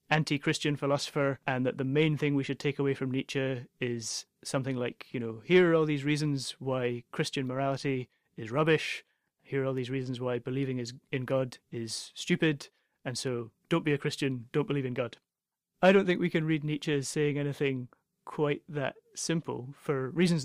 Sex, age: male, 30-49